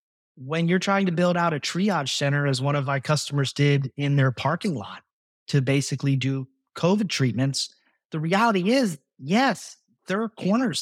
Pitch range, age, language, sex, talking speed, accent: 140-185 Hz, 30-49, English, male, 170 wpm, American